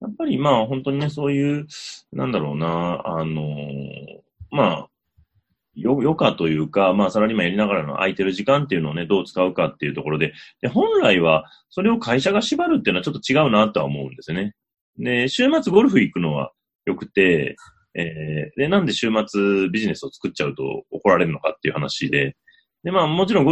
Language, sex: Japanese, male